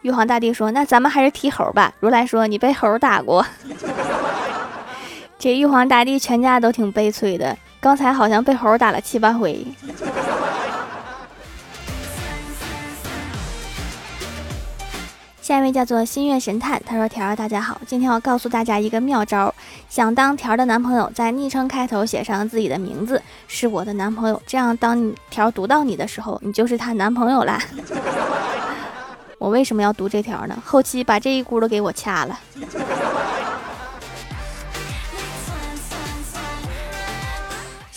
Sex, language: female, Chinese